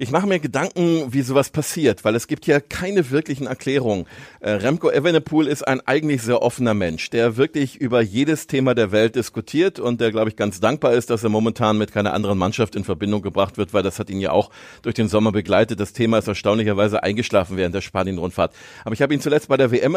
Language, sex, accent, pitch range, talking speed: German, male, German, 110-135 Hz, 225 wpm